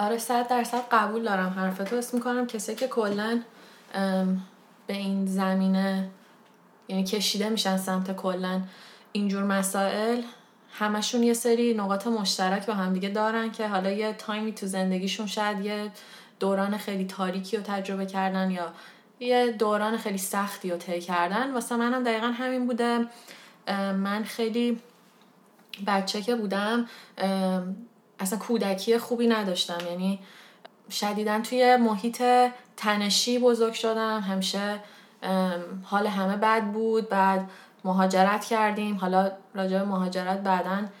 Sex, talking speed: female, 125 wpm